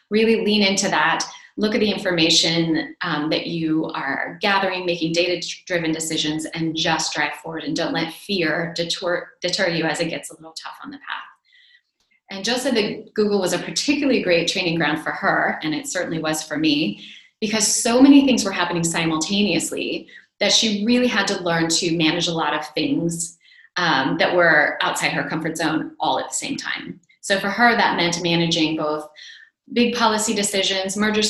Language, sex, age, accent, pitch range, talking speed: English, female, 30-49, American, 165-220 Hz, 185 wpm